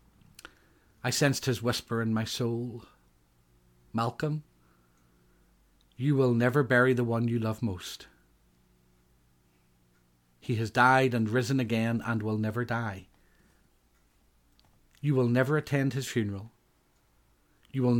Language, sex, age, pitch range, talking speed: English, male, 40-59, 95-125 Hz, 115 wpm